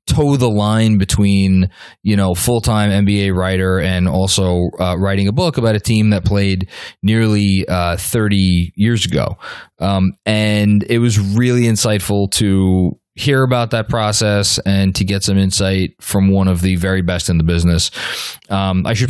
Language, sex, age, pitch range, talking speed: English, male, 20-39, 95-115 Hz, 165 wpm